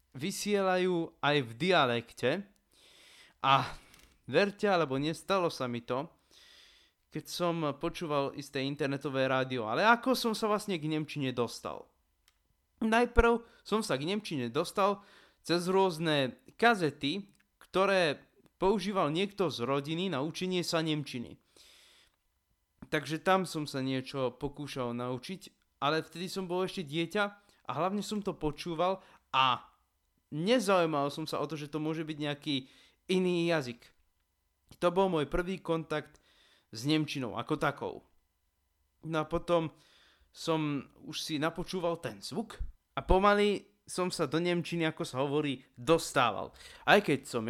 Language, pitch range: Slovak, 135-185 Hz